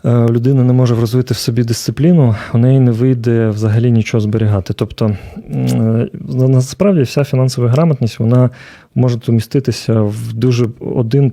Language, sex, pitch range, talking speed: Ukrainian, male, 115-135 Hz, 135 wpm